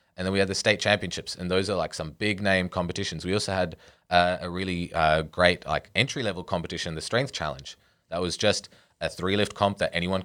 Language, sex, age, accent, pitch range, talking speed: English, male, 20-39, Australian, 85-100 Hz, 220 wpm